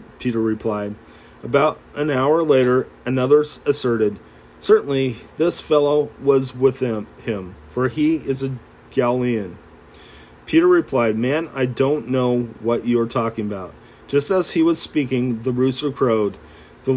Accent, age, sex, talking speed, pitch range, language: American, 40-59, male, 140 wpm, 115-140 Hz, English